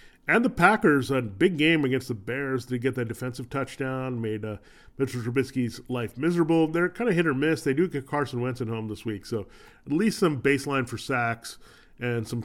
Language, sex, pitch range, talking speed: English, male, 120-160 Hz, 210 wpm